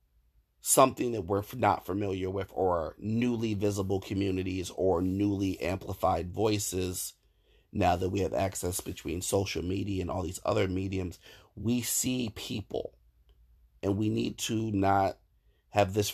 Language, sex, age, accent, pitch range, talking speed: English, male, 30-49, American, 95-110 Hz, 140 wpm